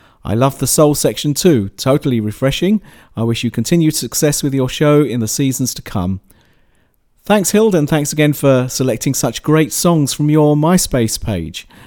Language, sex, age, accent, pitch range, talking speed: English, male, 40-59, British, 115-150 Hz, 175 wpm